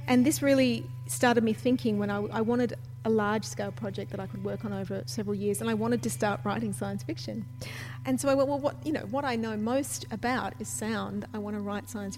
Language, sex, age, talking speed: English, female, 40-59, 240 wpm